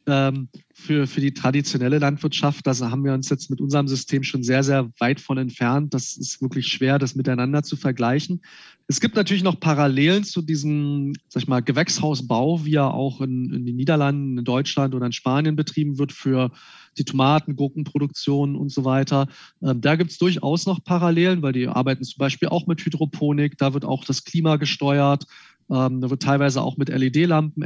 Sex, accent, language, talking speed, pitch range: male, German, German, 185 wpm, 135-155 Hz